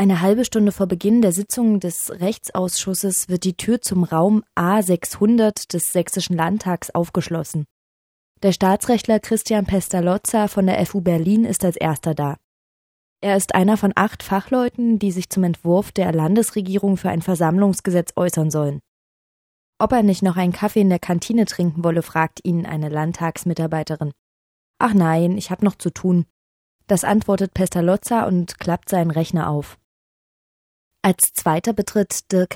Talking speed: 150 wpm